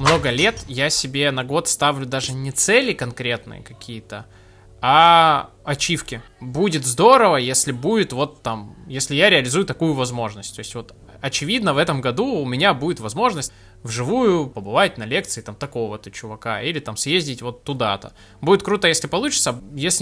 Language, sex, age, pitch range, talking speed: Russian, male, 20-39, 115-150 Hz, 160 wpm